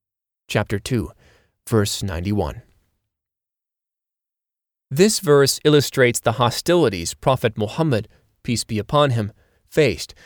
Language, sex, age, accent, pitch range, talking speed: English, male, 30-49, American, 105-145 Hz, 95 wpm